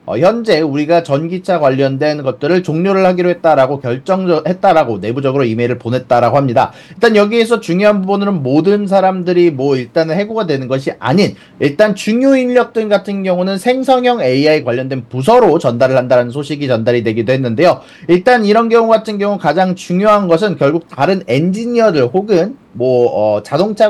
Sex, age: male, 40-59